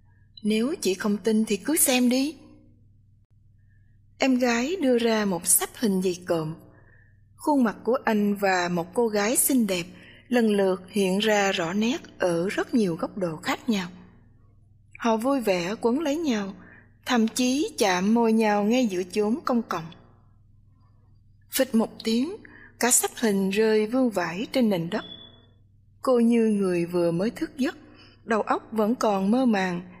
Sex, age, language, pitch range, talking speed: female, 20-39, English, 170-240 Hz, 160 wpm